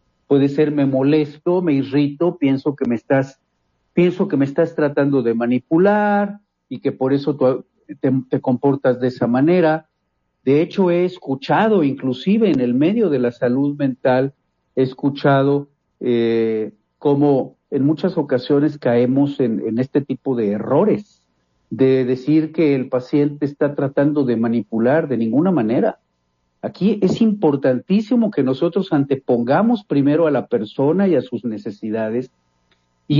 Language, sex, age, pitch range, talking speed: Spanish, male, 50-69, 130-175 Hz, 145 wpm